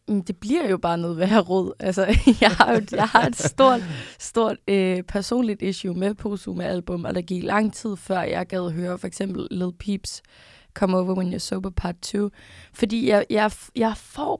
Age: 20-39